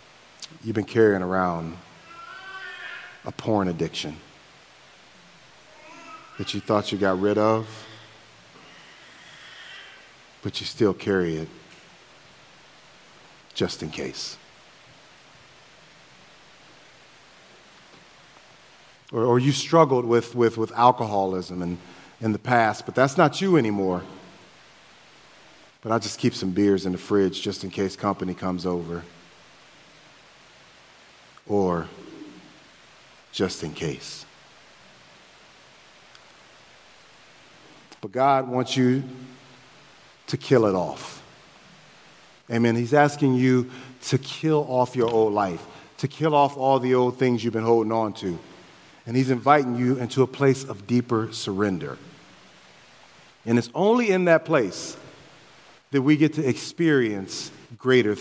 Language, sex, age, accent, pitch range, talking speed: English, male, 40-59, American, 100-135 Hz, 110 wpm